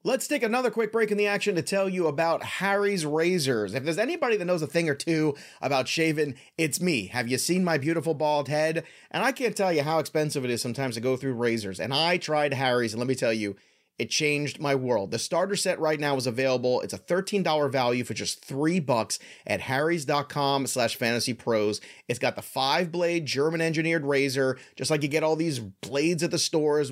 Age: 30-49